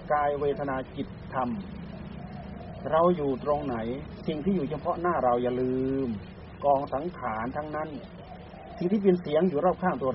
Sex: male